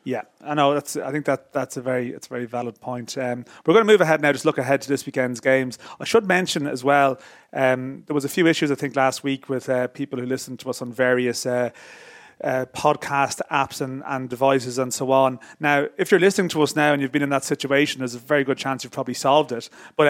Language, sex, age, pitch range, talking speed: English, male, 30-49, 125-145 Hz, 255 wpm